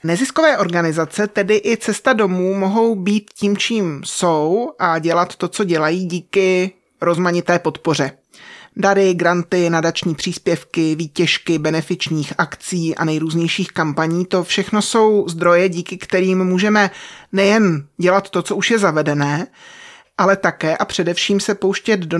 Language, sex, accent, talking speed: Czech, male, native, 135 wpm